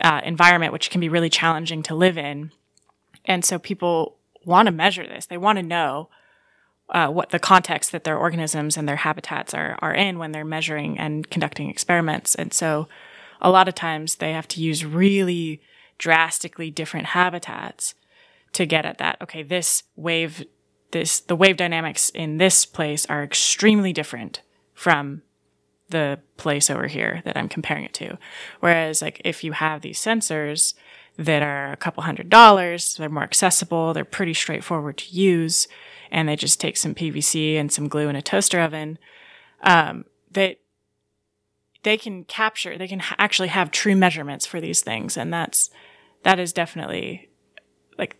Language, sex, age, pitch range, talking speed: English, female, 20-39, 155-185 Hz, 170 wpm